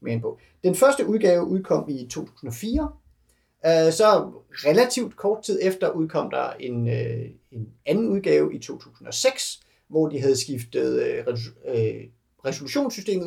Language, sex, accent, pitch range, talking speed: Danish, male, native, 140-215 Hz, 120 wpm